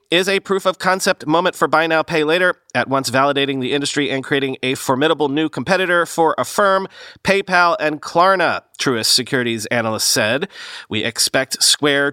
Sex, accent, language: male, American, English